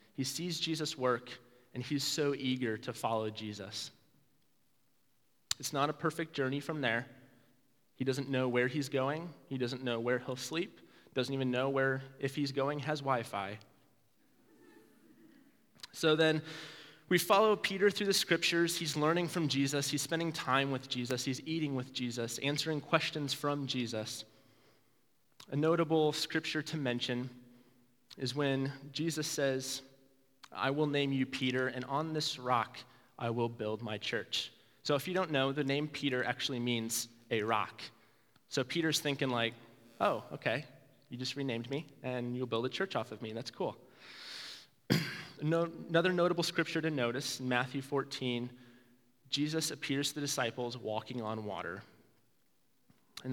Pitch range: 125-150 Hz